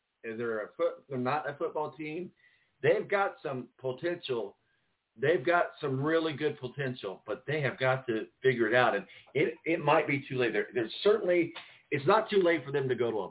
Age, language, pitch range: 40-59, English, 120-170 Hz